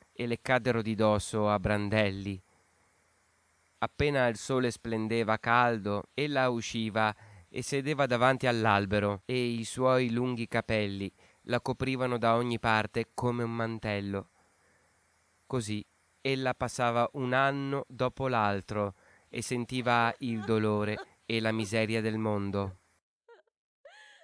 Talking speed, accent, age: 115 wpm, native, 30-49